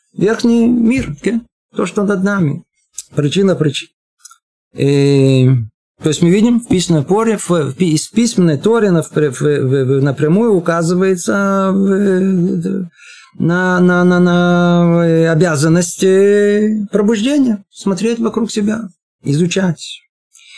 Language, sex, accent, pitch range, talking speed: Russian, male, native, 150-200 Hz, 85 wpm